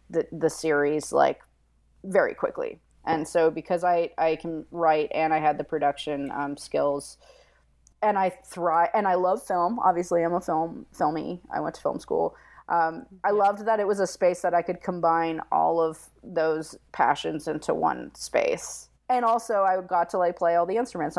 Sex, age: female, 30-49